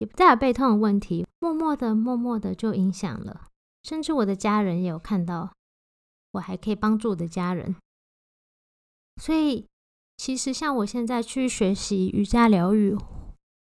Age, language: 20-39, Chinese